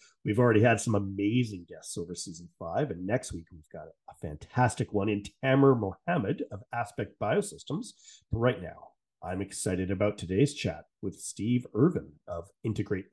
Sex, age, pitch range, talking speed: male, 30-49, 100-140 Hz, 160 wpm